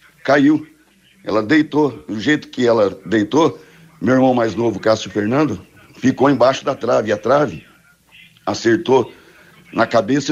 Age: 60-79